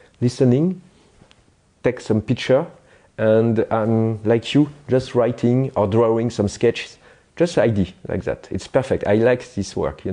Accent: French